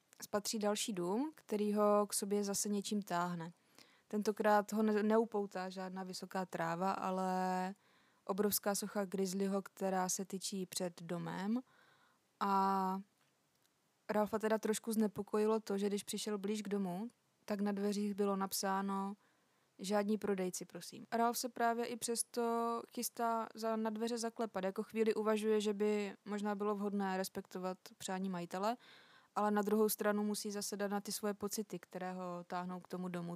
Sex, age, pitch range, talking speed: female, 20-39, 190-215 Hz, 150 wpm